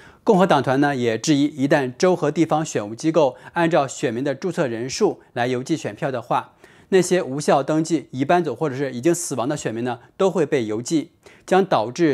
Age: 20-39